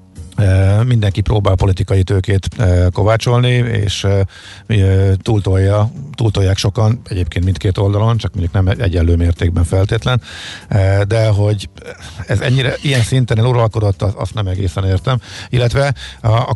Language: Hungarian